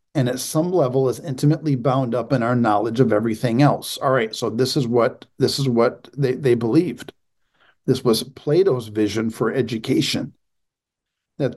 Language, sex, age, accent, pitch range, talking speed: English, male, 50-69, American, 125-150 Hz, 170 wpm